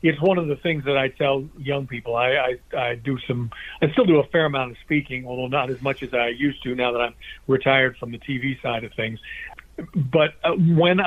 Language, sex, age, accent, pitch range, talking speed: English, male, 50-69, American, 125-150 Hz, 230 wpm